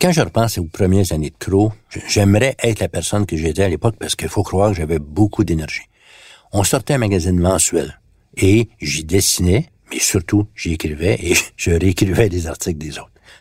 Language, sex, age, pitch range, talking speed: French, male, 60-79, 80-105 Hz, 190 wpm